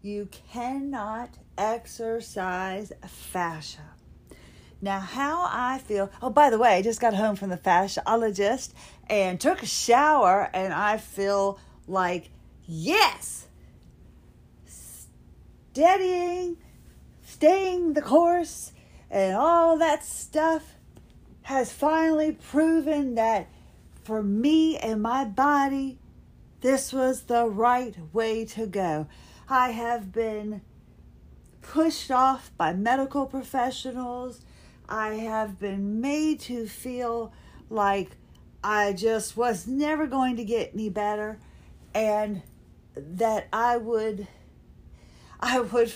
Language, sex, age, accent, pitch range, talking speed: English, female, 40-59, American, 205-260 Hz, 105 wpm